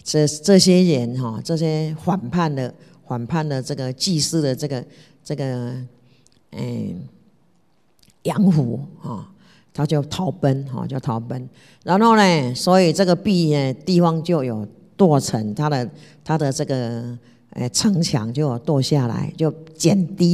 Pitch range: 140-185 Hz